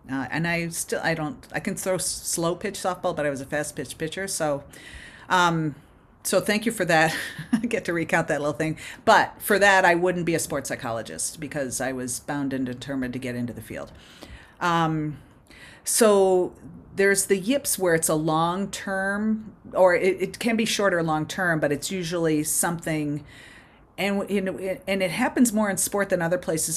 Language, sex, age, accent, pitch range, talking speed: English, female, 40-59, American, 155-195 Hz, 195 wpm